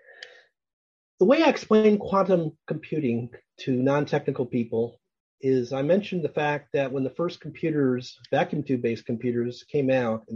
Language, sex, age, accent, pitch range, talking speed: English, male, 40-59, American, 125-175 Hz, 145 wpm